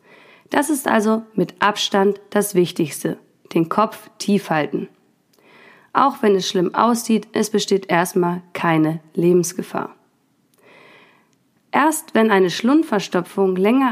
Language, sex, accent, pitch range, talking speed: German, female, German, 180-220 Hz, 110 wpm